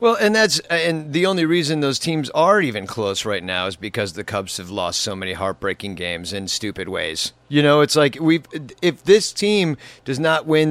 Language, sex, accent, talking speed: English, male, American, 215 wpm